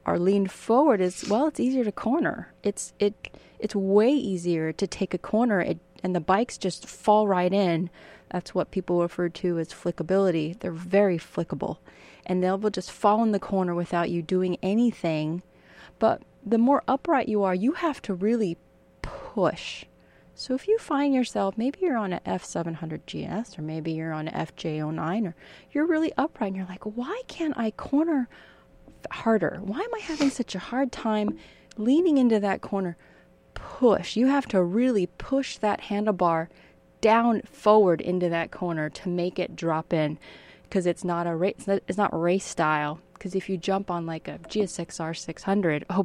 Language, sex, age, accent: English, female, 30-49, American